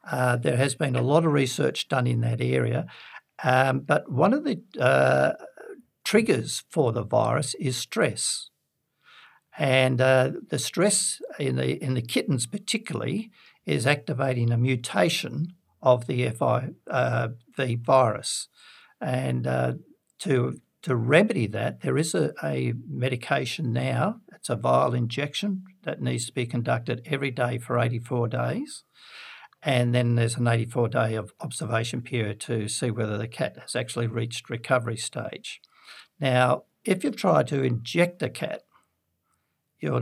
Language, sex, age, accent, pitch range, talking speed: English, male, 60-79, Australian, 120-150 Hz, 140 wpm